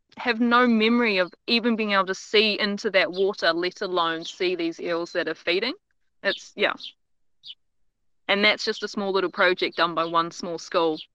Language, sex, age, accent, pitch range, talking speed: English, female, 20-39, Australian, 165-195 Hz, 185 wpm